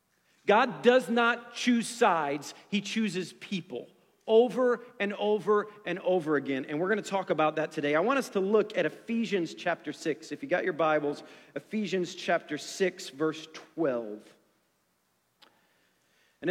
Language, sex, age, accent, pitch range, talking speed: English, male, 40-59, American, 180-230 Hz, 155 wpm